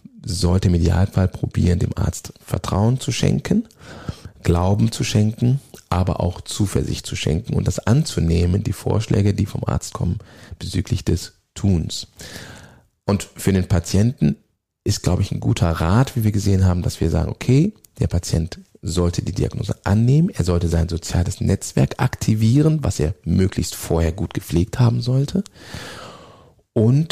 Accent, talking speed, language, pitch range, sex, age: German, 150 wpm, German, 90-115 Hz, male, 40-59